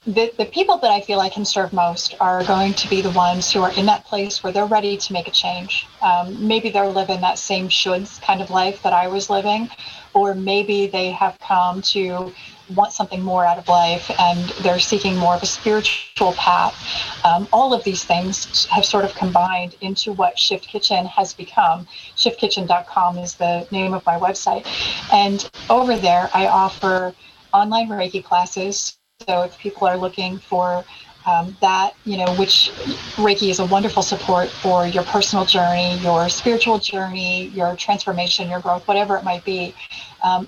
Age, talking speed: 30-49, 185 wpm